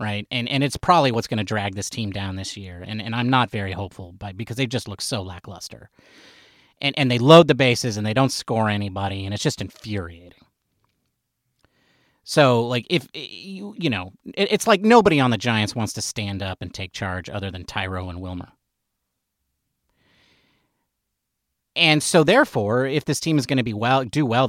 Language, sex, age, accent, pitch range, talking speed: English, male, 30-49, American, 100-135 Hz, 195 wpm